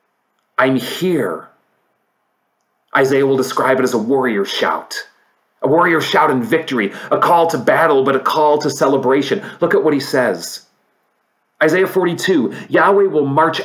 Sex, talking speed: male, 150 wpm